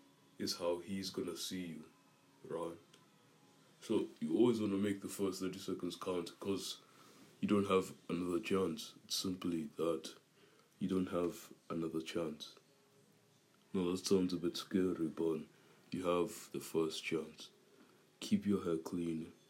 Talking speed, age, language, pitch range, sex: 150 wpm, 20-39, English, 85-95 Hz, male